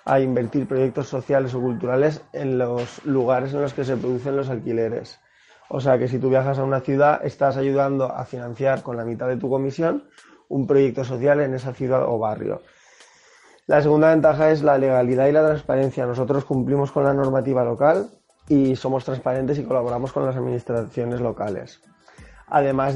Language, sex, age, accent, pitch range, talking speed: Spanish, male, 20-39, Spanish, 125-145 Hz, 180 wpm